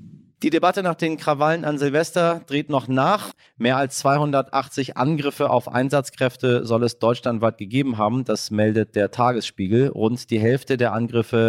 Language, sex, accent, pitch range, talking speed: German, male, German, 100-130 Hz, 155 wpm